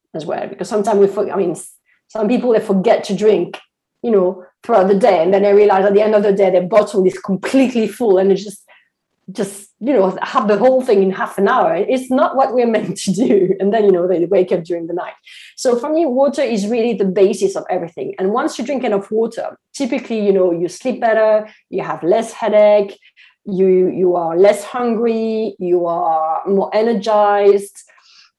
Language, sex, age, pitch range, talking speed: English, female, 30-49, 190-230 Hz, 210 wpm